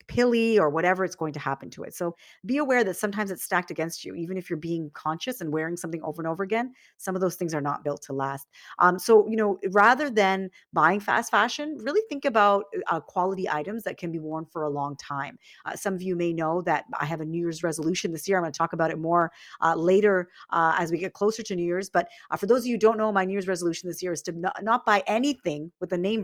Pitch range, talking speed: 155-200 Hz, 270 wpm